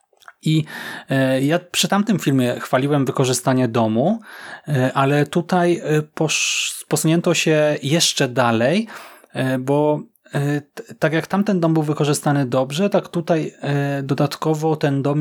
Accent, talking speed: native, 105 wpm